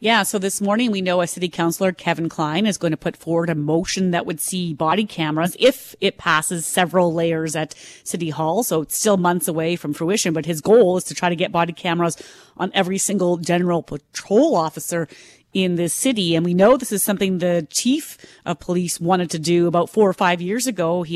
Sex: female